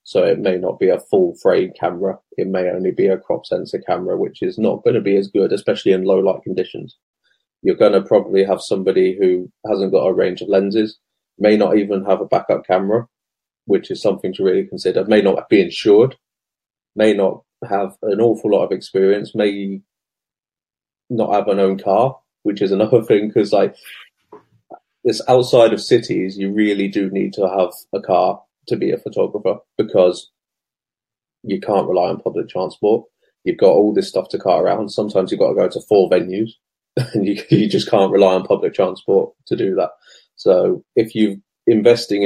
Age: 20-39